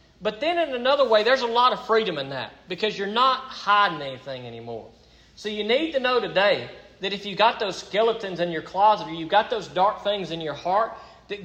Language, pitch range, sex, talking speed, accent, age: English, 155-220 Hz, male, 225 wpm, American, 40-59